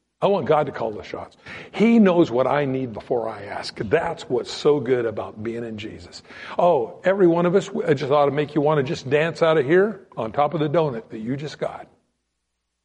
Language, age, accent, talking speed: English, 60-79, American, 235 wpm